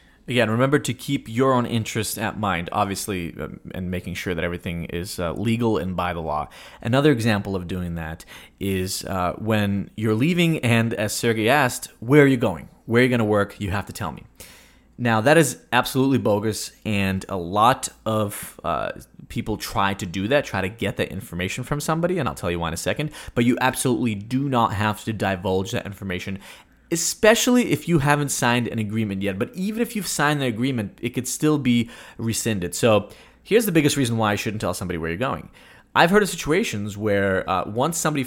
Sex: male